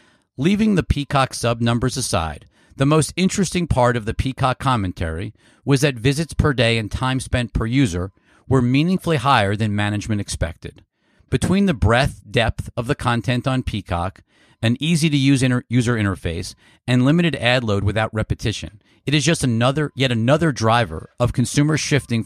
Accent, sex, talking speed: American, male, 165 wpm